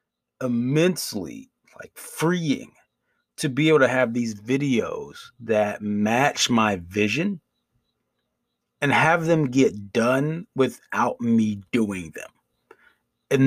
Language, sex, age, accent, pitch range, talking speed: English, male, 30-49, American, 105-130 Hz, 105 wpm